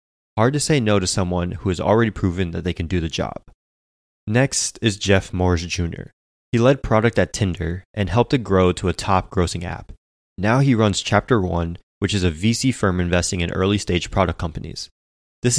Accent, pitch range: American, 85-110 Hz